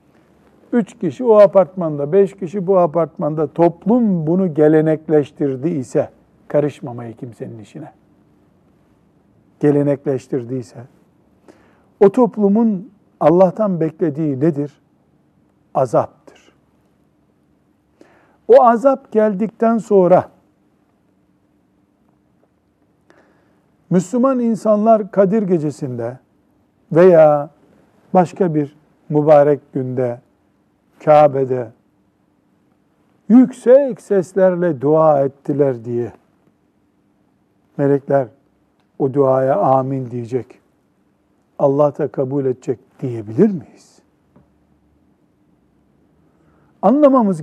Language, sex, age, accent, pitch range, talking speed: Turkish, male, 60-79, native, 135-195 Hz, 70 wpm